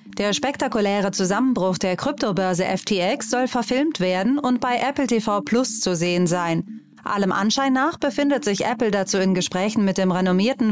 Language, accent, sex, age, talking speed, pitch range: German, German, female, 30-49, 160 wpm, 190-235 Hz